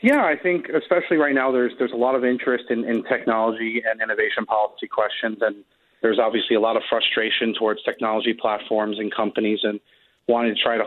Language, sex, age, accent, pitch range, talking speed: English, male, 30-49, American, 110-125 Hz, 200 wpm